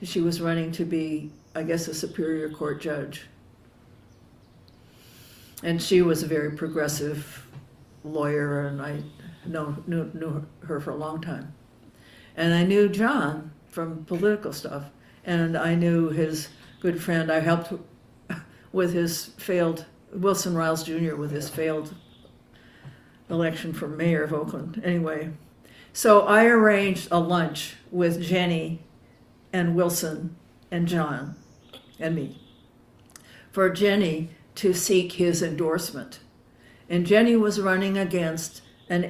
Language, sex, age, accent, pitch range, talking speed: English, female, 60-79, American, 150-180 Hz, 125 wpm